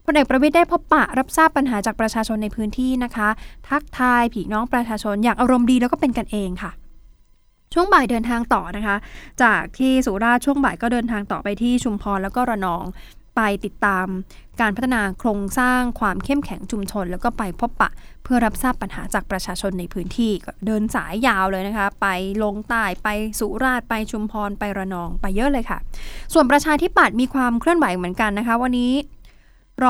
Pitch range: 205-250 Hz